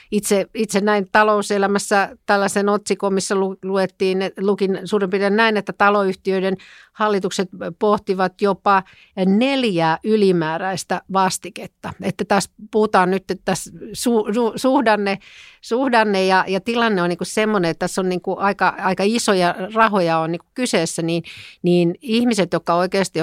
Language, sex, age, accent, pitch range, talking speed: Finnish, female, 50-69, native, 180-200 Hz, 135 wpm